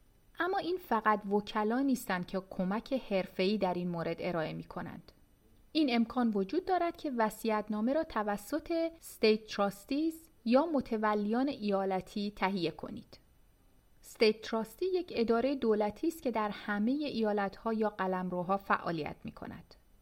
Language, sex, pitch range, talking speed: Persian, female, 190-245 Hz, 130 wpm